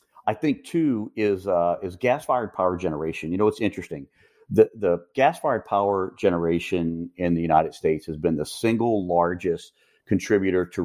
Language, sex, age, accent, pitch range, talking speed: English, male, 40-59, American, 85-100 Hz, 160 wpm